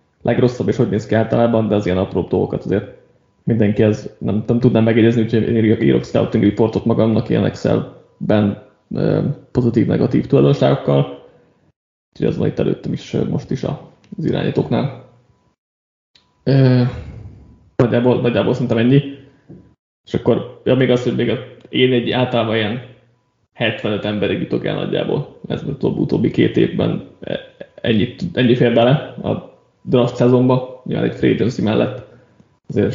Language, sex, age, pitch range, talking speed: Hungarian, male, 20-39, 110-125 Hz, 135 wpm